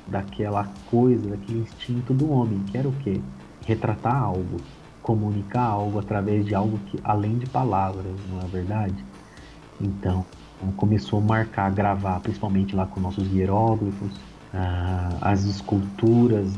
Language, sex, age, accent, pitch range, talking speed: Portuguese, male, 30-49, Brazilian, 95-120 Hz, 140 wpm